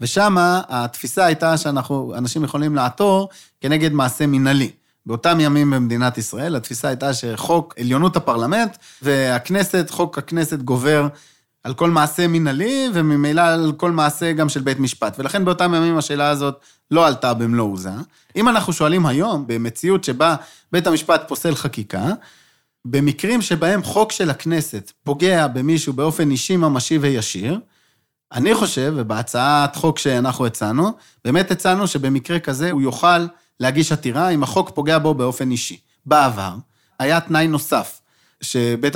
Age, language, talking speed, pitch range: 30-49, Hebrew, 140 wpm, 135-175 Hz